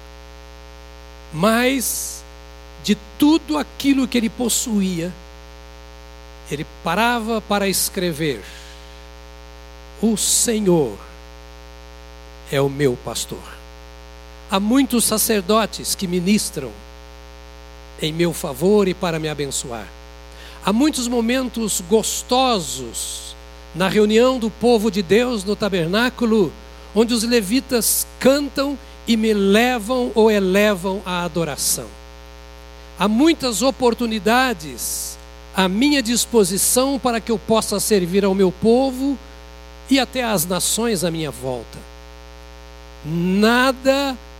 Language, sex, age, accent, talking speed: Portuguese, male, 60-79, Brazilian, 100 wpm